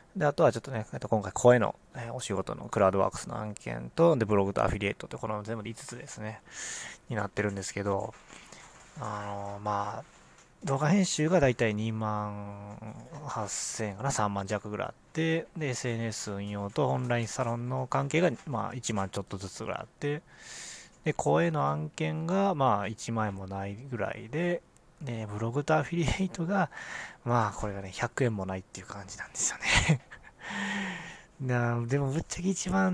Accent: native